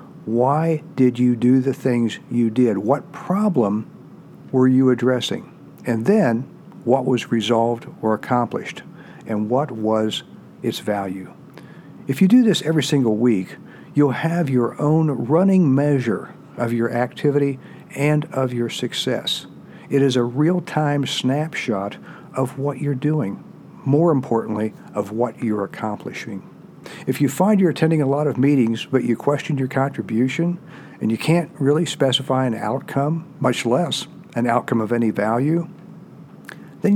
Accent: American